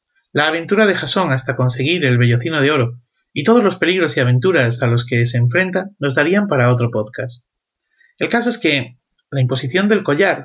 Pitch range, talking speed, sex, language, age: 125-185 Hz, 195 wpm, male, Spanish, 30-49